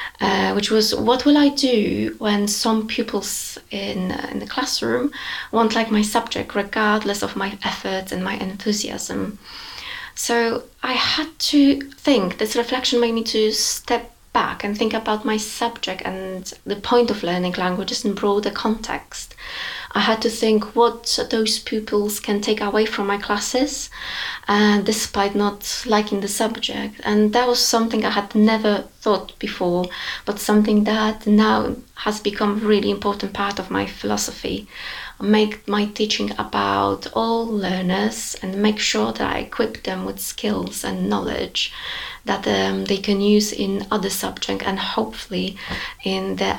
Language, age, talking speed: English, 20-39, 155 wpm